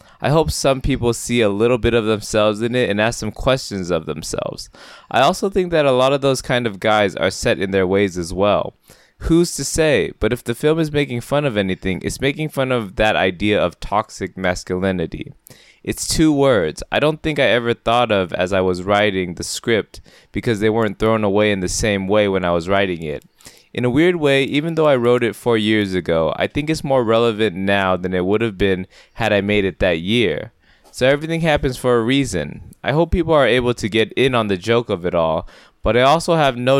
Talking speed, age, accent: 230 wpm, 20-39, American